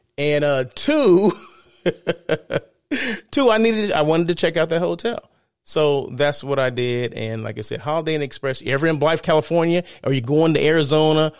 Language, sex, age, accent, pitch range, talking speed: English, male, 30-49, American, 115-155 Hz, 185 wpm